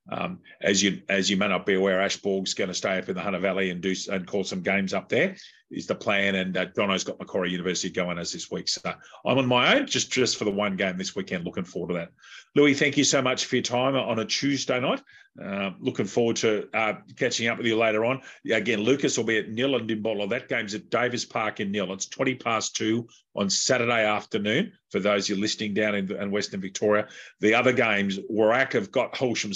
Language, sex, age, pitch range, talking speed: English, male, 40-59, 100-125 Hz, 240 wpm